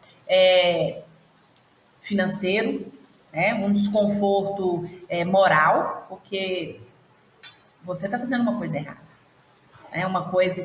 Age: 40-59